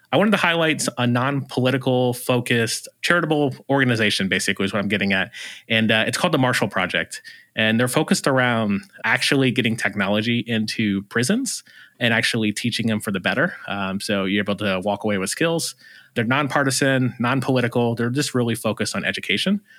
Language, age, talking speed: English, 30-49, 170 wpm